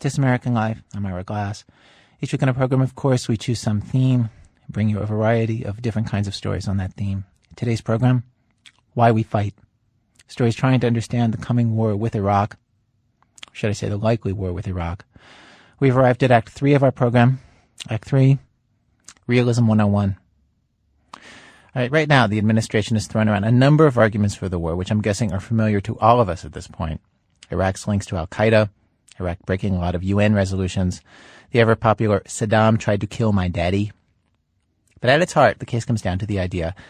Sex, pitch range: male, 100-125 Hz